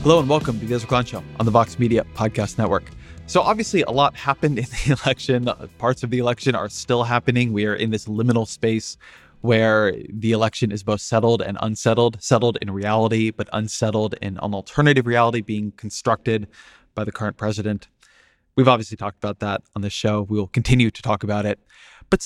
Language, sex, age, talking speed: English, male, 20-39, 195 wpm